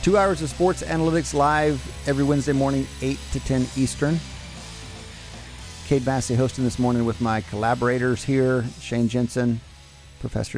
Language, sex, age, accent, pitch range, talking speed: English, male, 40-59, American, 100-135 Hz, 140 wpm